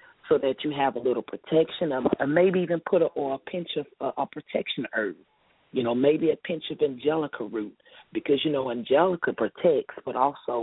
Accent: American